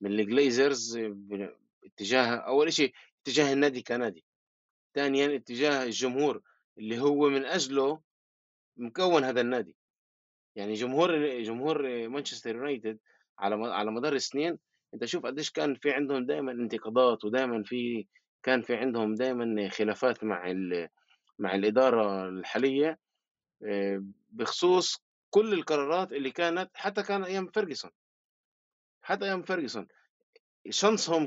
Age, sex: 20-39, male